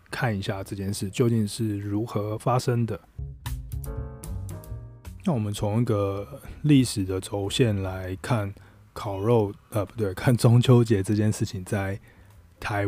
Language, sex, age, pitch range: Chinese, male, 20-39, 100-120 Hz